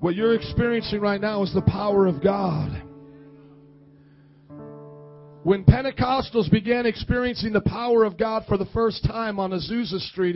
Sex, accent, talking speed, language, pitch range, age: male, American, 145 wpm, English, 180-240 Hz, 40-59